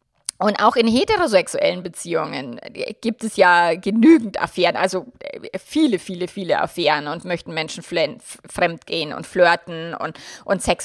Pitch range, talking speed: 175-220 Hz, 135 wpm